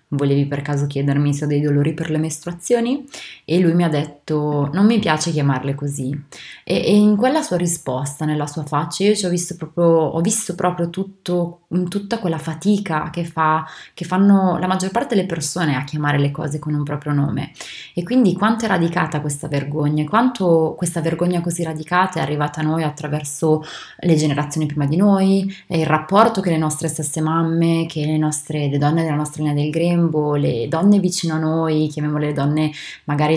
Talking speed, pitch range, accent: 195 wpm, 150-180 Hz, native